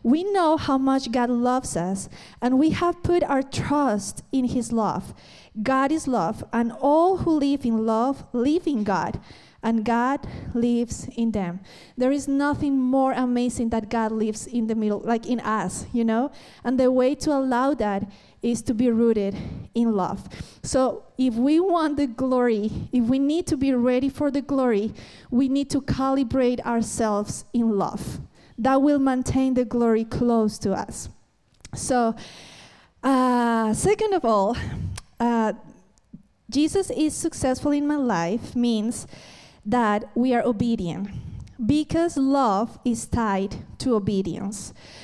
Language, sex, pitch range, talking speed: English, female, 225-275 Hz, 150 wpm